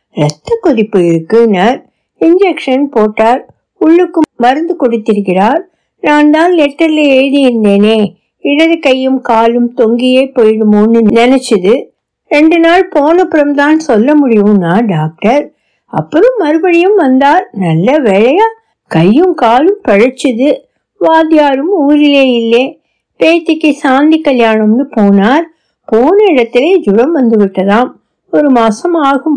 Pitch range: 225-295 Hz